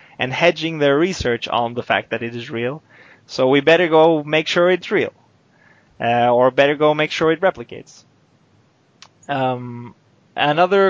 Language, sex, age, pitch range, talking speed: English, male, 20-39, 125-155 Hz, 160 wpm